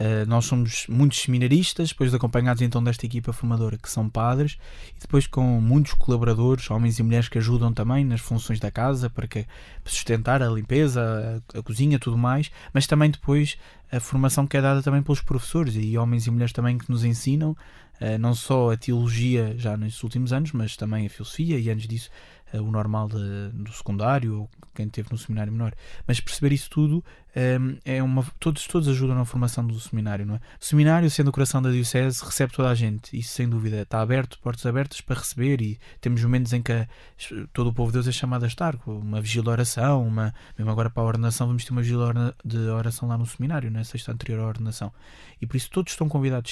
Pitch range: 115-135 Hz